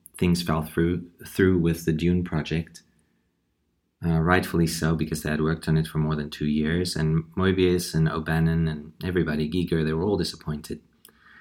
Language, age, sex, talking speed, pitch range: English, 30-49, male, 175 wpm, 80-95 Hz